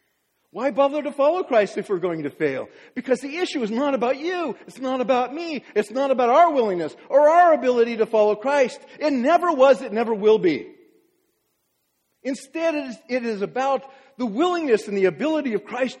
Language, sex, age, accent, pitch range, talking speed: English, male, 50-69, American, 195-290 Hz, 190 wpm